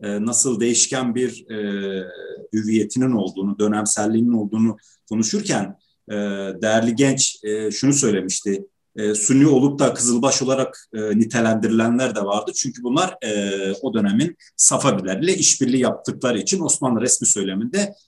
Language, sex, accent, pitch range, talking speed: Turkish, male, native, 100-135 Hz, 125 wpm